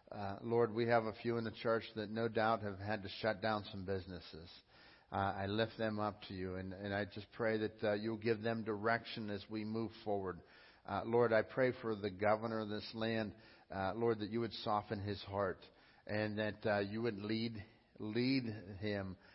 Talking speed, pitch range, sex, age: 210 wpm, 105-115 Hz, male, 50-69